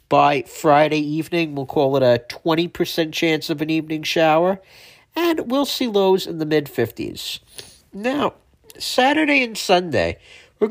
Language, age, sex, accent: English, 50-69, male, American